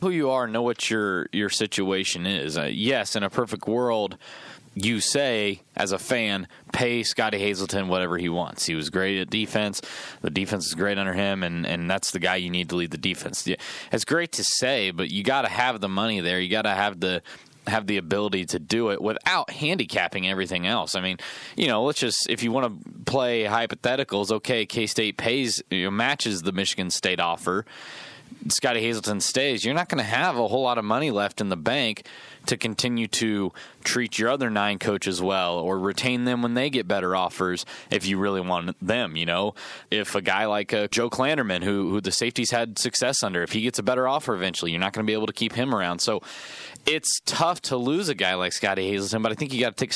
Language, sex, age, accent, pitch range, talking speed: English, male, 20-39, American, 95-115 Hz, 220 wpm